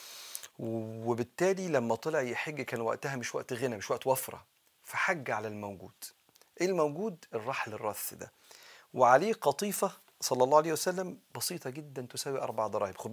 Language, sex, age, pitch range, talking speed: Arabic, male, 40-59, 115-155 Hz, 145 wpm